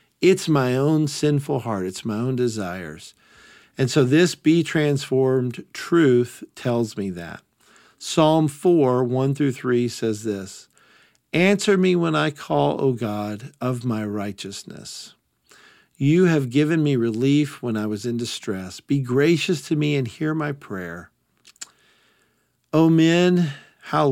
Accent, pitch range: American, 120-150 Hz